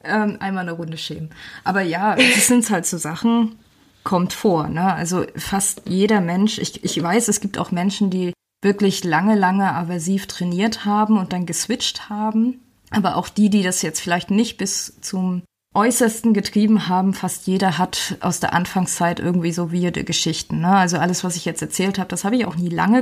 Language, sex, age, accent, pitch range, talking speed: German, female, 20-39, German, 180-220 Hz, 190 wpm